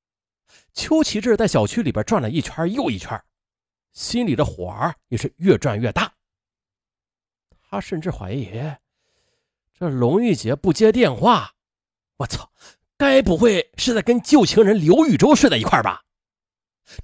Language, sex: Chinese, male